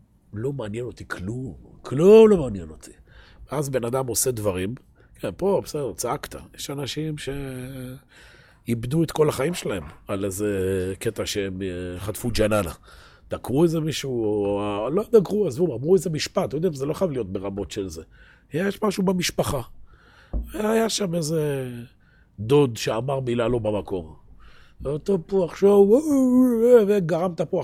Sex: male